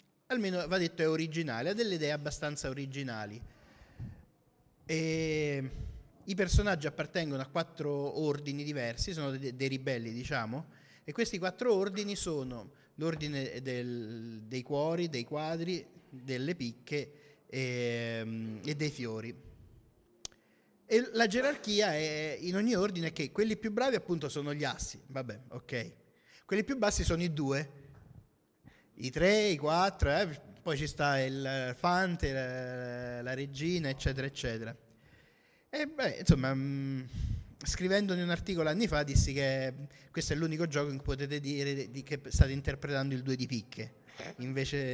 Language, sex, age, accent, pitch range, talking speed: Italian, male, 30-49, native, 130-165 Hz, 140 wpm